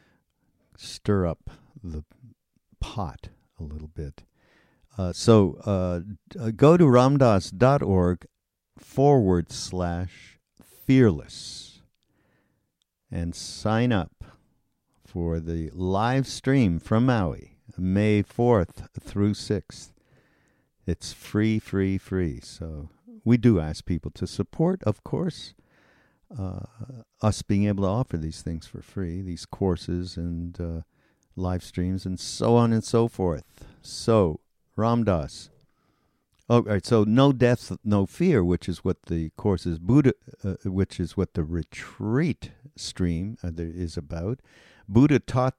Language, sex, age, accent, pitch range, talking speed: English, male, 60-79, American, 90-115 Hz, 125 wpm